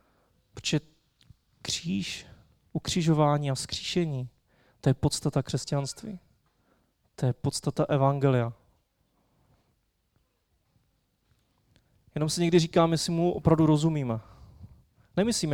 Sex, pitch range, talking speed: male, 130-155 Hz, 85 wpm